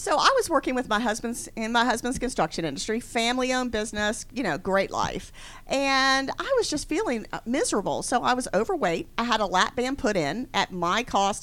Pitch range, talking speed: 175-235 Hz, 200 wpm